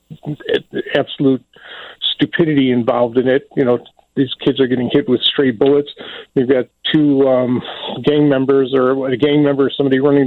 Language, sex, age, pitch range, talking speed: English, male, 40-59, 125-140 Hz, 160 wpm